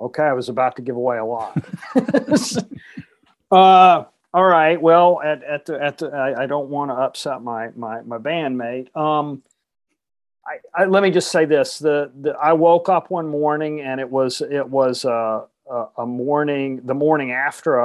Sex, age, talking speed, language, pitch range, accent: male, 40-59, 185 wpm, English, 125-160 Hz, American